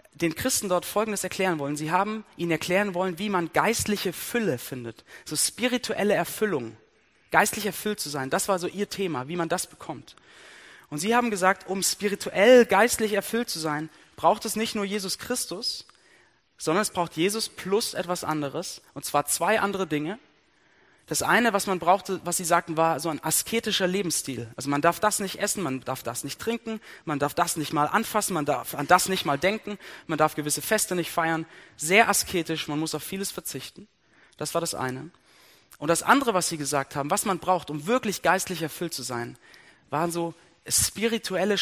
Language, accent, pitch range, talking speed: German, German, 155-200 Hz, 190 wpm